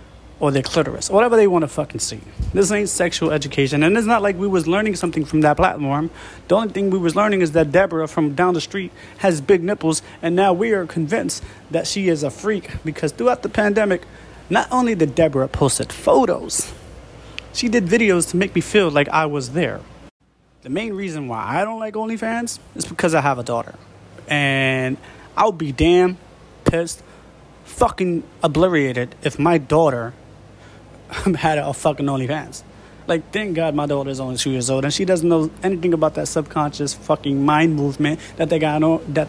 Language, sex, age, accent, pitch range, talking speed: English, male, 20-39, American, 140-180 Hz, 190 wpm